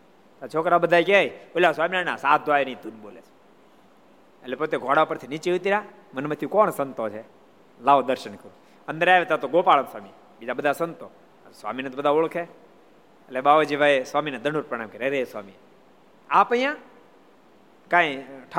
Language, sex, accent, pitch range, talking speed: Gujarati, male, native, 140-190 Hz, 60 wpm